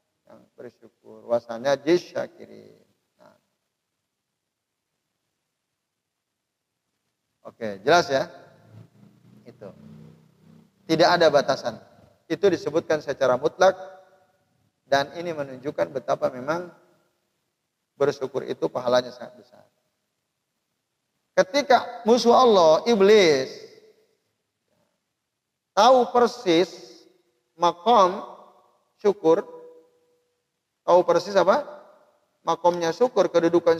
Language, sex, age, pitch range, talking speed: Indonesian, male, 50-69, 145-200 Hz, 65 wpm